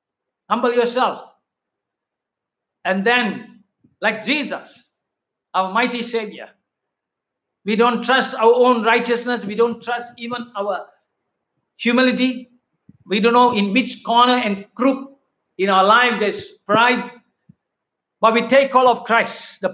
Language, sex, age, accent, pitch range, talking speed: Tamil, male, 60-79, native, 195-240 Hz, 130 wpm